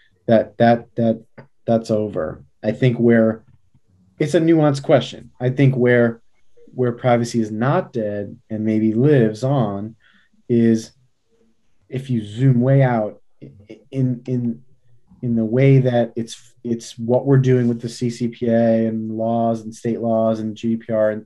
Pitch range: 110-130 Hz